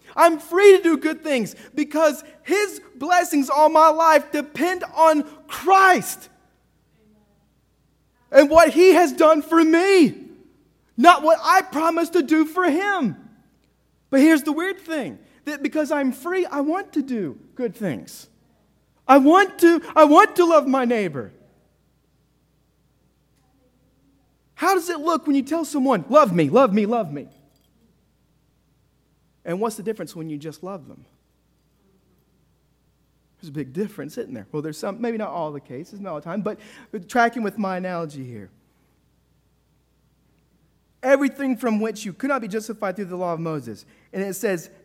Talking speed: 155 wpm